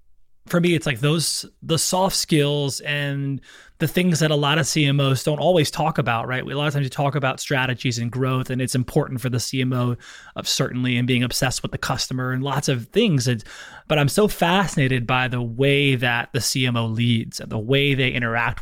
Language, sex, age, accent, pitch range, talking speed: English, male, 20-39, American, 120-145 Hz, 205 wpm